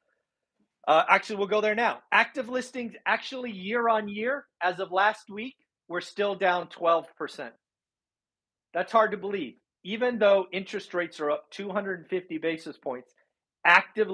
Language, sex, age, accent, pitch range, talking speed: English, male, 40-59, American, 155-215 Hz, 145 wpm